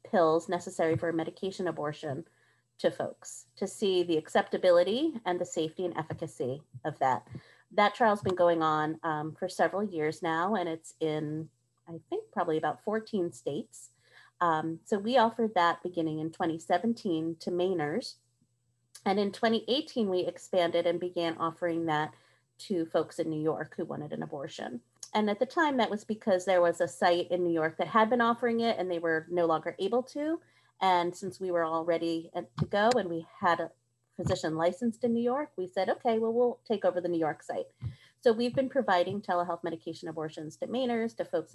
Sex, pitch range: female, 160-205 Hz